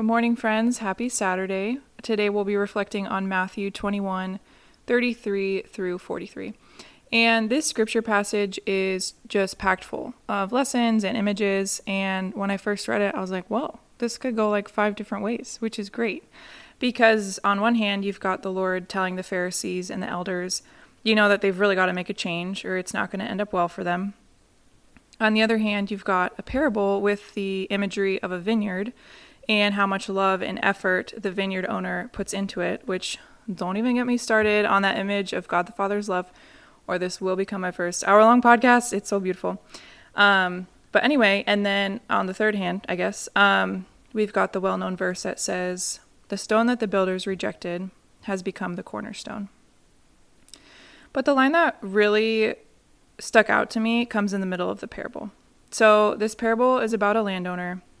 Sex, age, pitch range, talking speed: female, 20-39, 190-220 Hz, 190 wpm